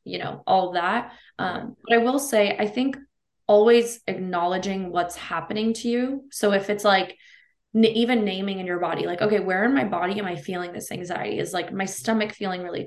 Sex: female